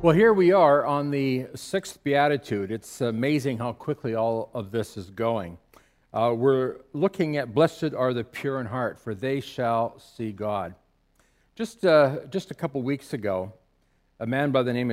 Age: 50-69